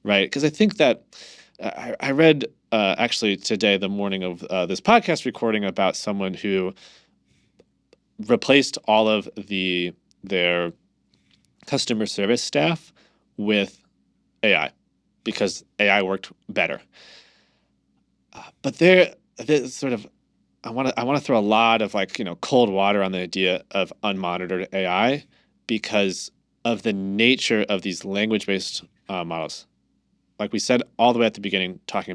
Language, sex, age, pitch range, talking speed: English, male, 30-49, 95-135 Hz, 155 wpm